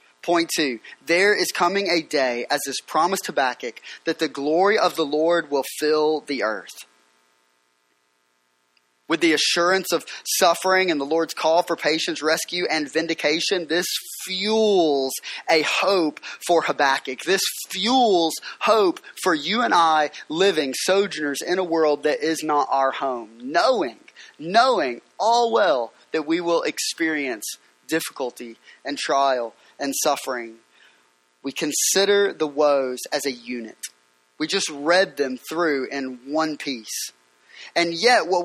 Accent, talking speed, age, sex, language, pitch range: American, 140 wpm, 20-39, male, English, 135-195 Hz